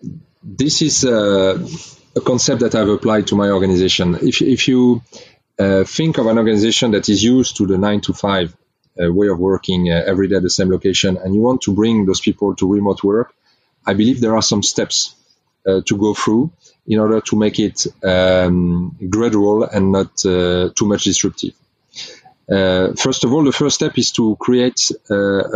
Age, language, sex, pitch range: 30-49, English, male, 95-120 Hz